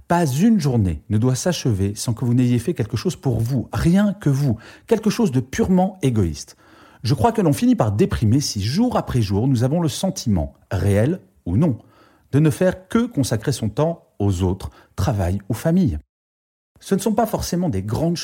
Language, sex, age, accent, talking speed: French, male, 40-59, French, 195 wpm